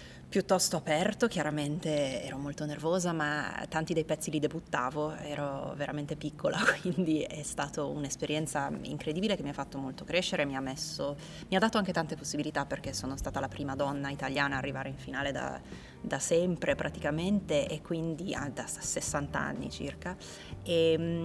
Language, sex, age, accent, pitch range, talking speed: Italian, female, 20-39, native, 135-165 Hz, 160 wpm